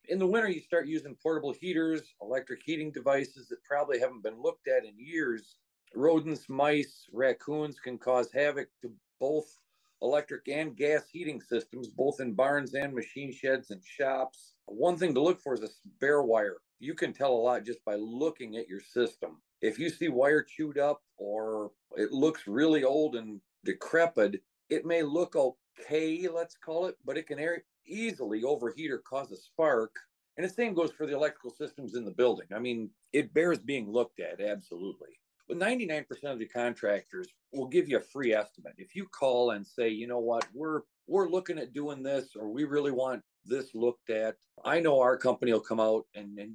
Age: 50-69